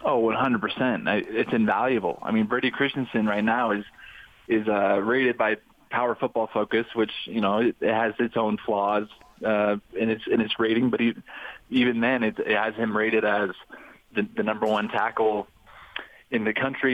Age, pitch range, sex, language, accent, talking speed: 20-39, 105-120 Hz, male, English, American, 180 wpm